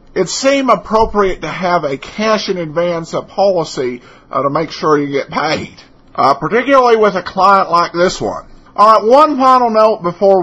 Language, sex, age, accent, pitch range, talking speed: English, male, 50-69, American, 160-215 Hz, 180 wpm